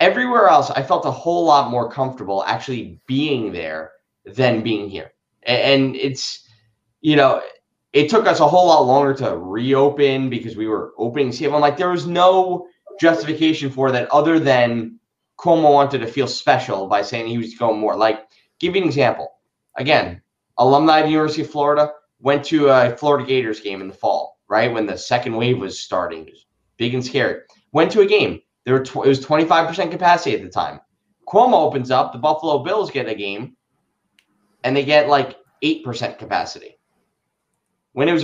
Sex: male